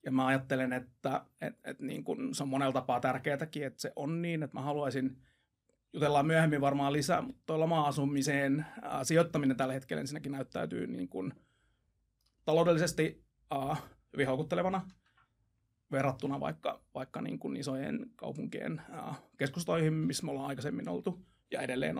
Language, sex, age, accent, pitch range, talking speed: Finnish, male, 30-49, native, 130-150 Hz, 140 wpm